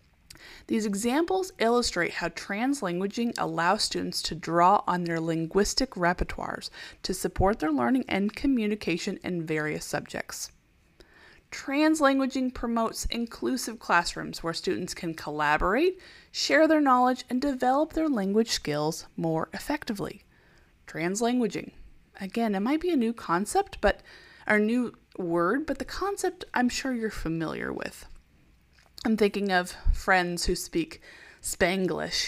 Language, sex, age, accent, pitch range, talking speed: English, female, 20-39, American, 170-245 Hz, 125 wpm